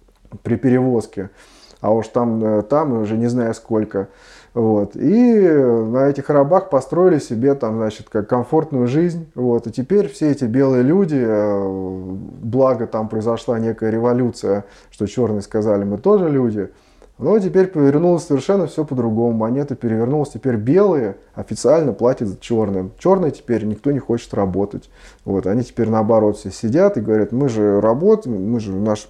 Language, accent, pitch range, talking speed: Russian, native, 105-135 Hz, 155 wpm